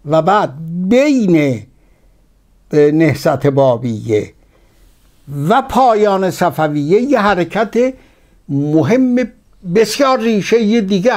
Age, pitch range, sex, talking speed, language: 60-79, 140-205 Hz, male, 75 wpm, Persian